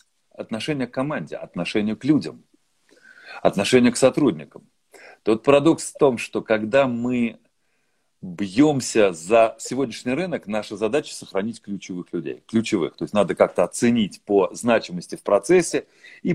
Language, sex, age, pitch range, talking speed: Russian, male, 40-59, 105-135 Hz, 135 wpm